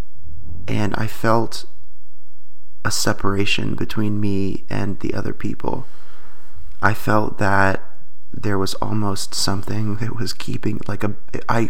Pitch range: 100-115 Hz